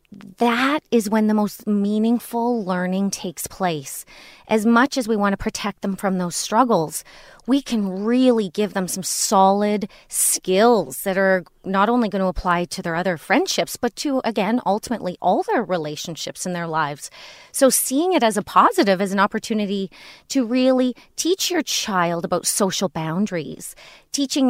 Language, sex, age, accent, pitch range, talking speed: English, female, 30-49, American, 185-240 Hz, 165 wpm